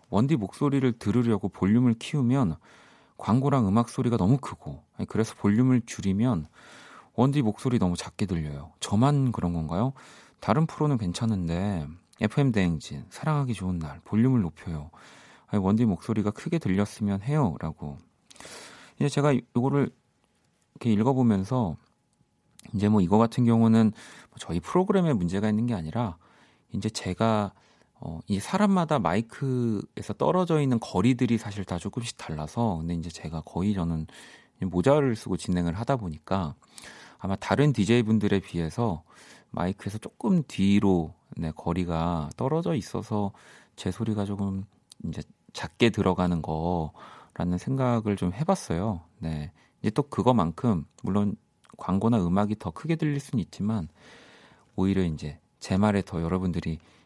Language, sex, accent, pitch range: Korean, male, native, 90-120 Hz